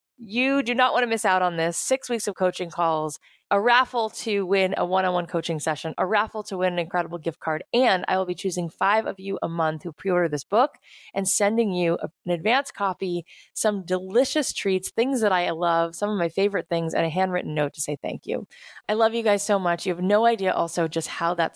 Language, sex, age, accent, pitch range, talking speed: English, female, 20-39, American, 165-210 Hz, 235 wpm